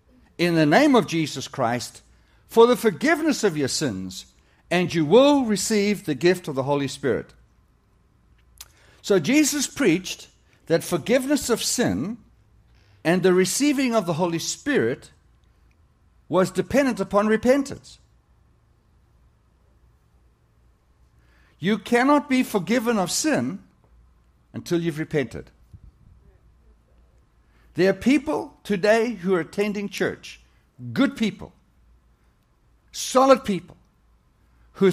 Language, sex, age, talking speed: English, male, 60-79, 105 wpm